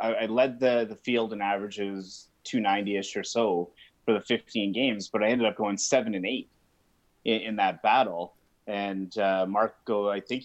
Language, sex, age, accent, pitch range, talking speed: English, male, 30-49, American, 95-115 Hz, 185 wpm